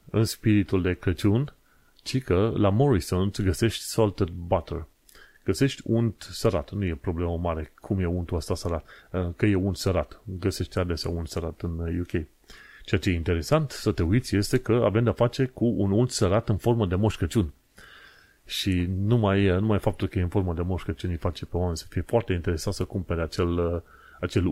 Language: Romanian